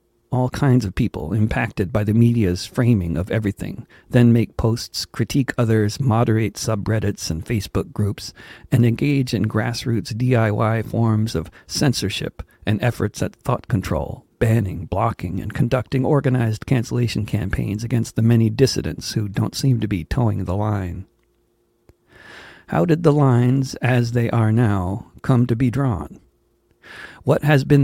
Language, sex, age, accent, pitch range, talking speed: English, male, 40-59, American, 105-125 Hz, 145 wpm